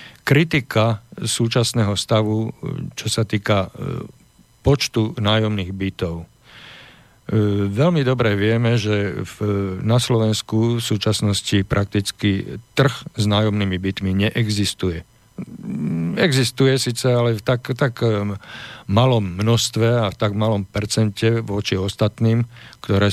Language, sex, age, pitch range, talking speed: Slovak, male, 50-69, 100-120 Hz, 105 wpm